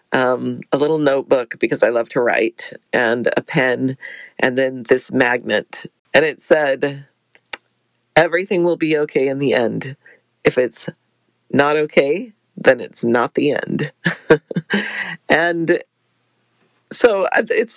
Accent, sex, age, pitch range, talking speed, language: American, female, 40-59, 150-190 Hz, 130 wpm, English